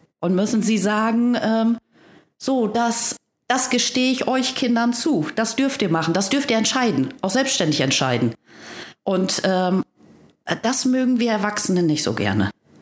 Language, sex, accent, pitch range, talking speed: German, female, German, 165-240 Hz, 155 wpm